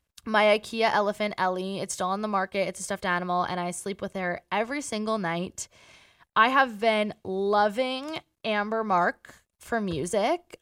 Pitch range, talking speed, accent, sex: 185-220 Hz, 165 wpm, American, female